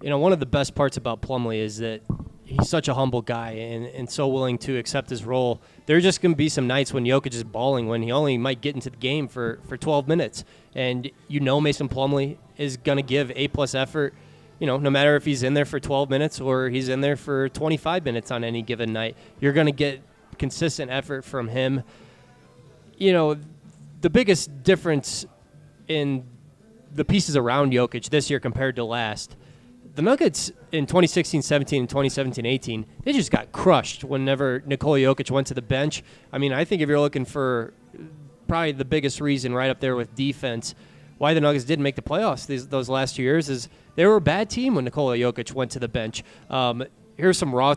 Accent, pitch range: American, 130-145 Hz